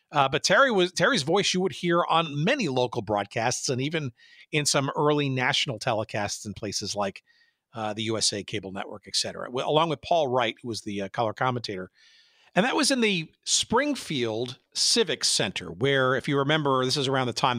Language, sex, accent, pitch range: English, male, American, 115-155 Hz